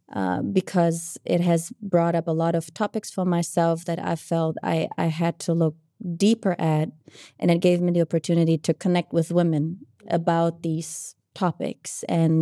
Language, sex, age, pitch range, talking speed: Czech, female, 20-39, 160-180 Hz, 175 wpm